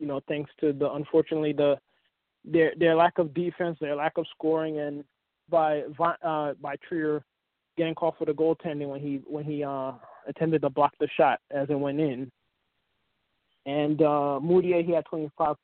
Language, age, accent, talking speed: English, 20-39, American, 175 wpm